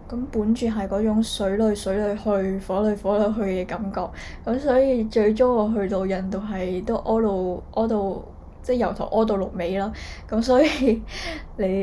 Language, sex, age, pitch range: Chinese, female, 10-29, 195-230 Hz